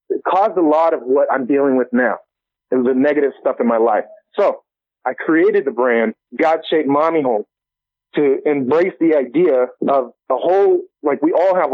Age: 30-49